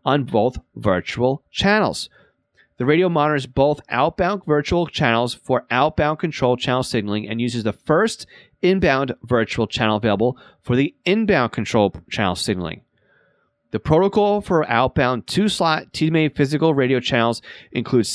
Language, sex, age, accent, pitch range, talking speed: English, male, 30-49, American, 110-145 Hz, 135 wpm